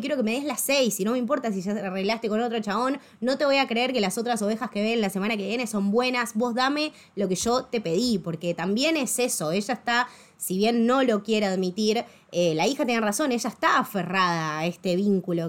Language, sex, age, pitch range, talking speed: Spanish, female, 20-39, 180-235 Hz, 245 wpm